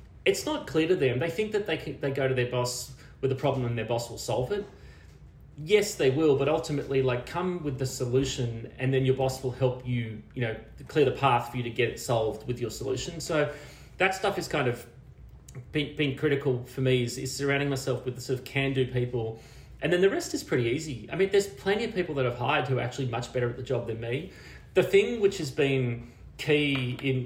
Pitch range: 125-145 Hz